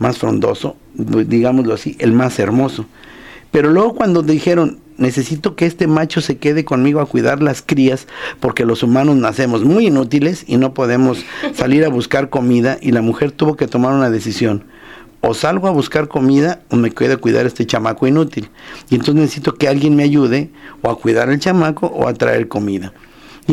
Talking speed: 185 wpm